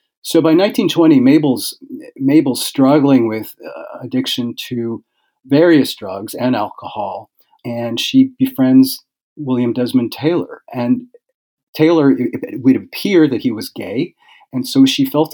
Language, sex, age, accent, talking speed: English, male, 40-59, American, 130 wpm